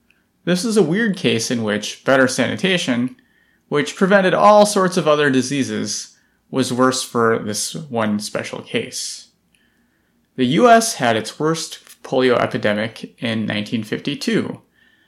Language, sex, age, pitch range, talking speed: English, male, 30-49, 115-170 Hz, 125 wpm